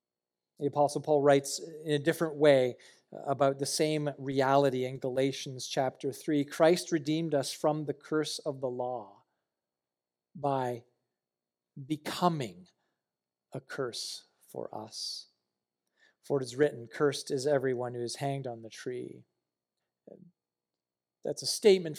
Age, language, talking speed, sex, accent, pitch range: 40-59, English, 130 wpm, male, American, 100-145 Hz